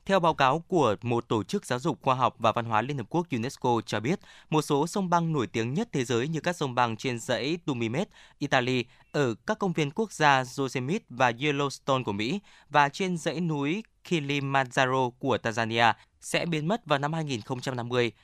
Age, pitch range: 20-39, 120-160 Hz